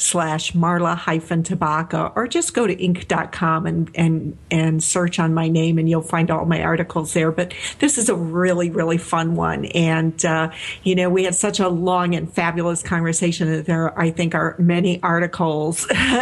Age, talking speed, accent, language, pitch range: 50-69, 185 wpm, American, English, 170-205 Hz